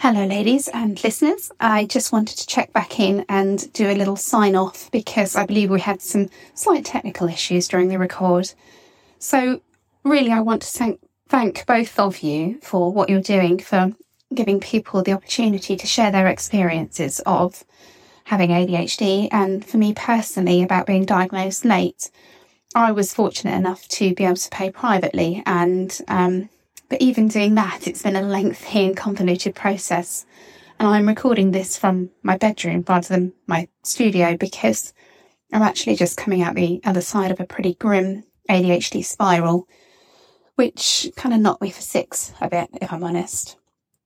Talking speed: 170 wpm